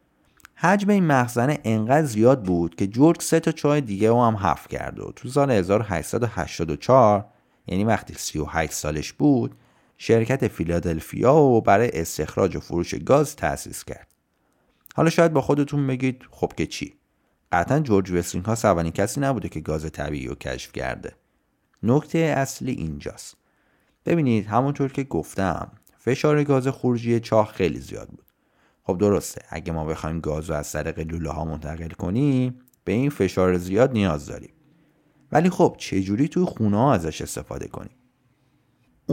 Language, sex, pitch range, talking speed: Persian, male, 85-135 Hz, 150 wpm